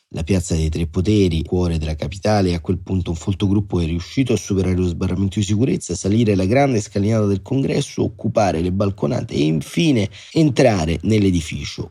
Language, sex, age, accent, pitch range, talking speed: Italian, male, 30-49, native, 85-100 Hz, 185 wpm